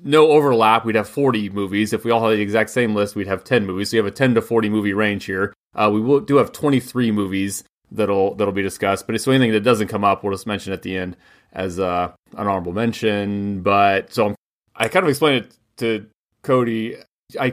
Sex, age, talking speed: male, 30-49, 235 wpm